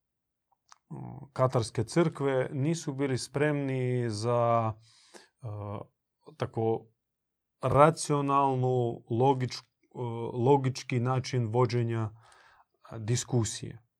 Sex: male